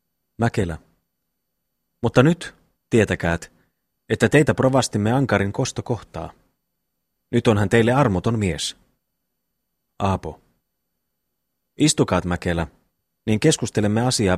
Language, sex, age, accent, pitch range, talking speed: Finnish, male, 30-49, native, 85-125 Hz, 90 wpm